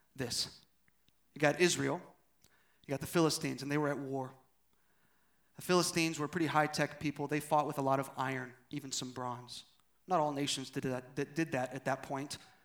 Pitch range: 145-180 Hz